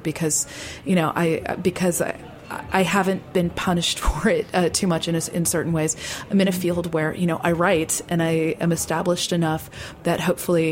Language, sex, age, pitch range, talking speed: English, female, 30-49, 165-190 Hz, 200 wpm